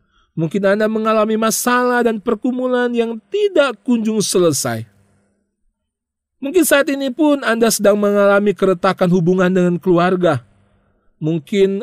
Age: 40-59